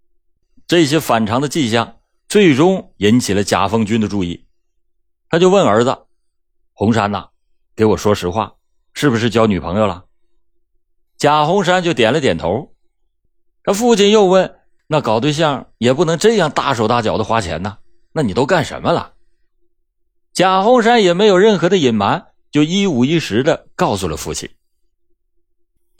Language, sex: Chinese, male